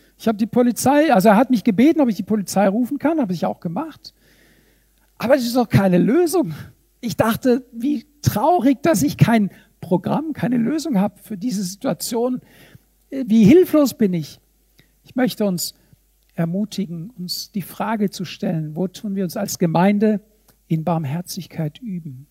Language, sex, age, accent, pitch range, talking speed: German, male, 60-79, German, 185-245 Hz, 165 wpm